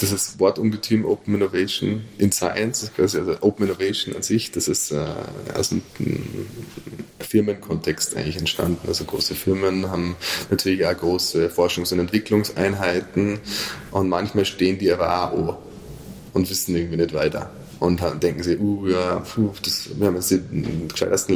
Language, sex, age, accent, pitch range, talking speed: German, male, 20-39, German, 90-105 Hz, 155 wpm